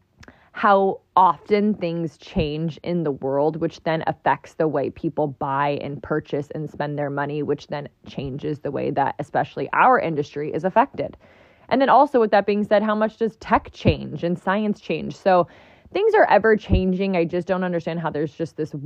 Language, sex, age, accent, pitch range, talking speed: English, female, 20-39, American, 155-205 Hz, 190 wpm